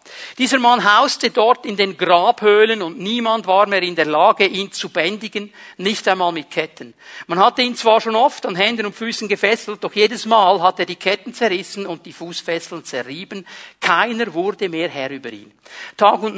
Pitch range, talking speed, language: 160-210 Hz, 190 wpm, German